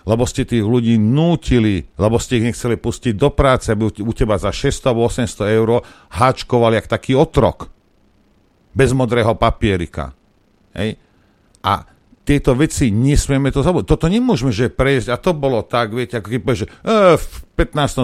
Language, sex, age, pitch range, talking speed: Slovak, male, 50-69, 85-125 Hz, 160 wpm